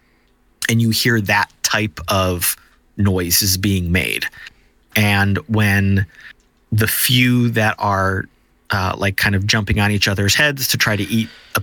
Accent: American